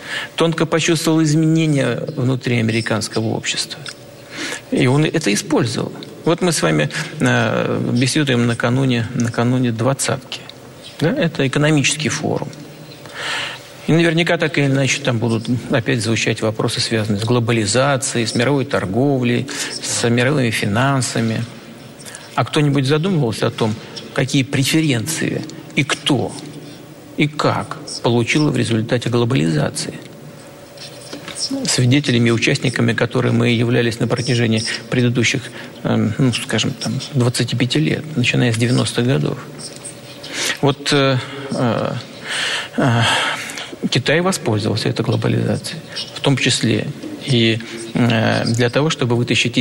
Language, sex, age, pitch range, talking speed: Russian, male, 50-69, 120-145 Hz, 110 wpm